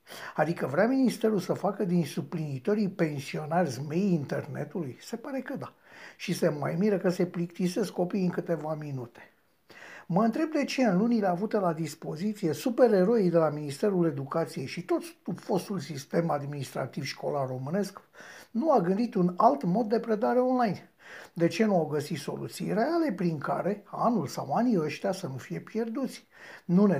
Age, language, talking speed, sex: 60-79, Romanian, 165 wpm, male